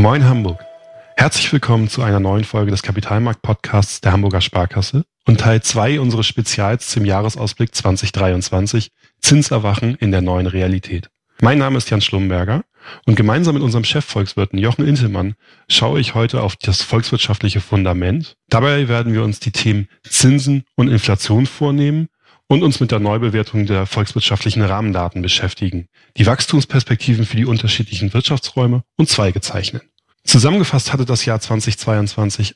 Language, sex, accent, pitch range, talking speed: German, male, German, 105-125 Hz, 145 wpm